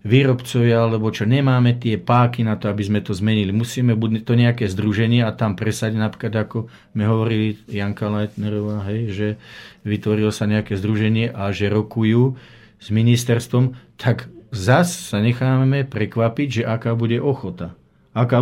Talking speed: 150 wpm